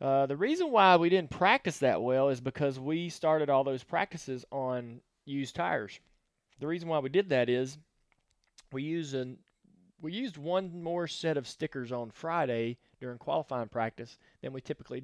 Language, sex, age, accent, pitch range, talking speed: English, male, 20-39, American, 120-155 Hz, 170 wpm